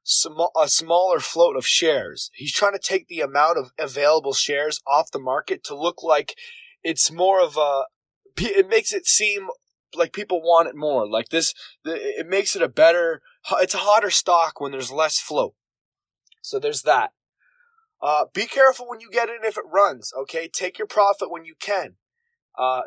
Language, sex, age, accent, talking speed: English, male, 20-39, American, 185 wpm